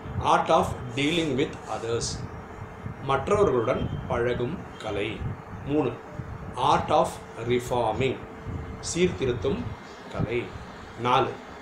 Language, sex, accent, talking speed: Tamil, male, native, 85 wpm